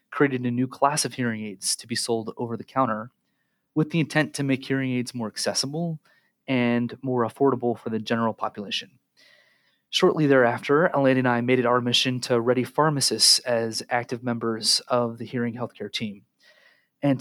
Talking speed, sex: 165 wpm, male